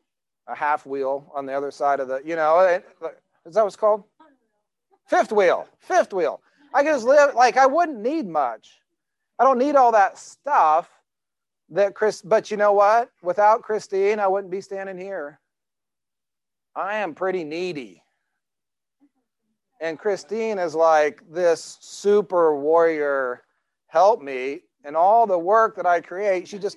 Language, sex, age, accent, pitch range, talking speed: English, male, 40-59, American, 170-220 Hz, 155 wpm